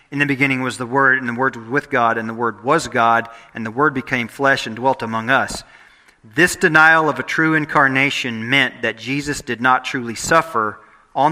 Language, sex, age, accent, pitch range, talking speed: English, male, 40-59, American, 115-155 Hz, 210 wpm